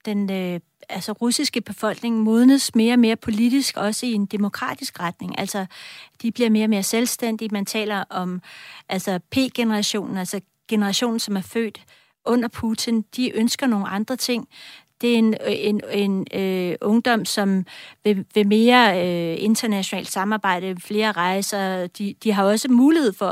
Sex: female